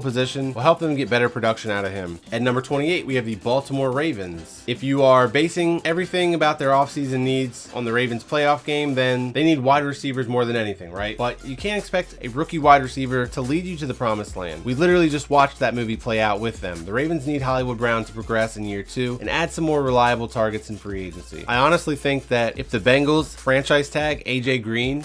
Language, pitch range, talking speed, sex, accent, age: English, 115-150 Hz, 230 wpm, male, American, 20-39